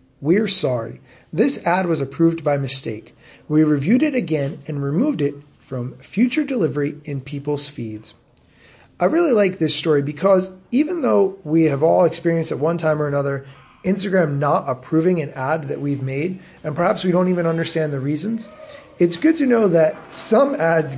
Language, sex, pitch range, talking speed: English, male, 145-195 Hz, 175 wpm